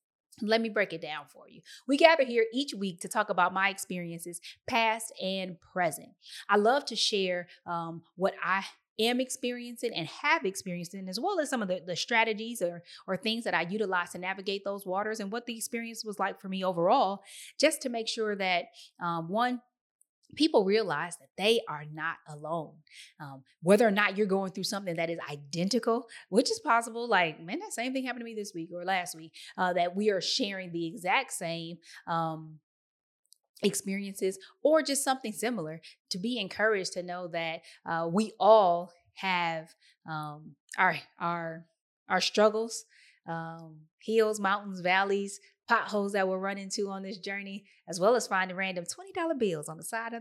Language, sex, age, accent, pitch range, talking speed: English, female, 20-39, American, 170-225 Hz, 185 wpm